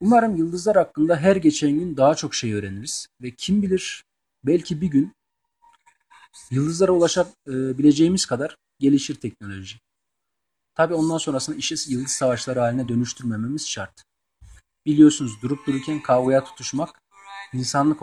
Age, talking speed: 40-59, 120 wpm